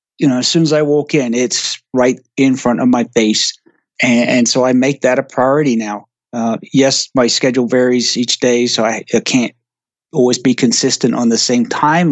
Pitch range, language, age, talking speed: 125-145 Hz, English, 30-49, 210 wpm